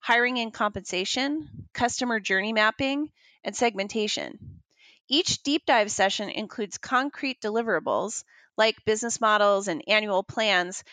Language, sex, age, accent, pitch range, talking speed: English, female, 30-49, American, 210-275 Hz, 115 wpm